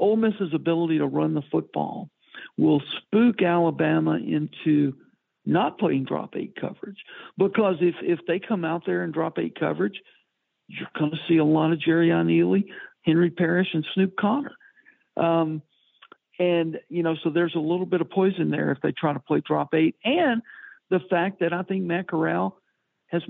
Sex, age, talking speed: male, 60-79, 170 wpm